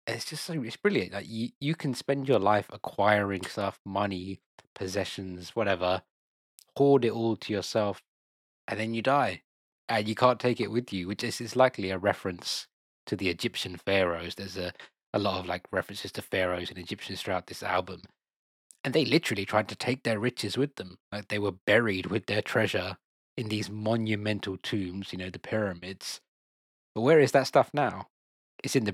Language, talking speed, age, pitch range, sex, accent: English, 190 wpm, 20-39, 95-115 Hz, male, British